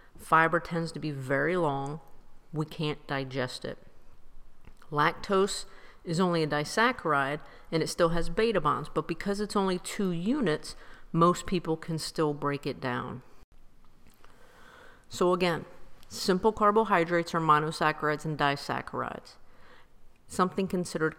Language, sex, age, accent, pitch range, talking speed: English, female, 50-69, American, 150-190 Hz, 125 wpm